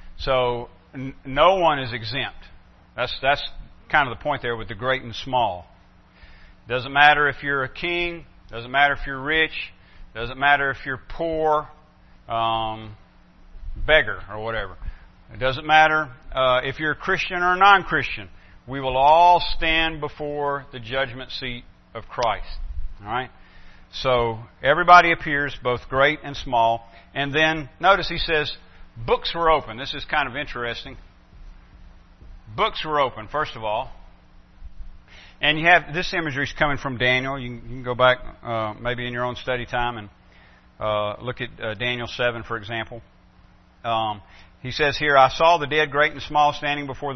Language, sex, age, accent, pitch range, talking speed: English, male, 50-69, American, 110-150 Hz, 165 wpm